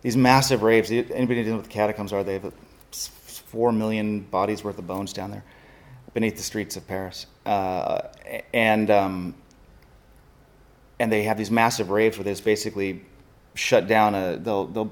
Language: English